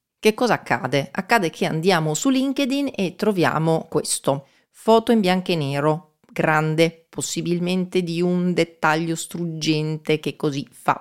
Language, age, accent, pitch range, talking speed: Italian, 30-49, native, 145-195 Hz, 135 wpm